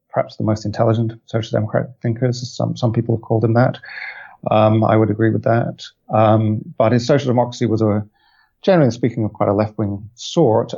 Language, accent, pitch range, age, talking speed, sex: English, British, 105-125 Hz, 40-59, 200 wpm, male